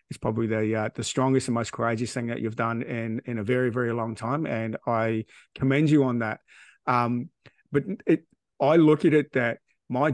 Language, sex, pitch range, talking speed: English, male, 115-130 Hz, 205 wpm